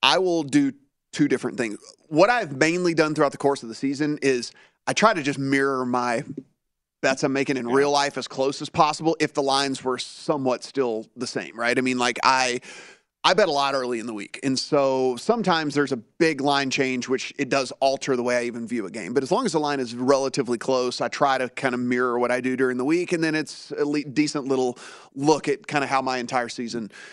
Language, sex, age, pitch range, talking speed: English, male, 30-49, 125-150 Hz, 240 wpm